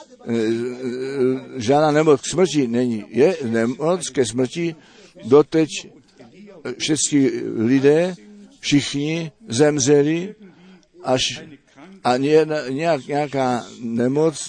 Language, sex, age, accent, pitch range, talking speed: Czech, male, 60-79, native, 135-180 Hz, 75 wpm